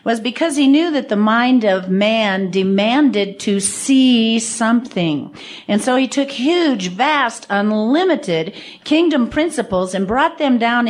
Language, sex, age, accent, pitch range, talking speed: English, female, 50-69, American, 185-235 Hz, 145 wpm